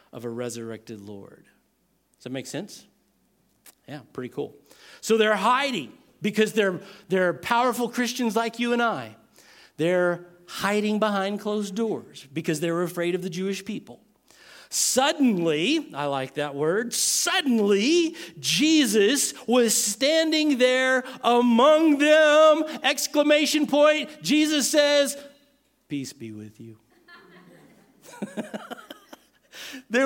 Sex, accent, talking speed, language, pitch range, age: male, American, 110 wpm, English, 205-295 Hz, 50-69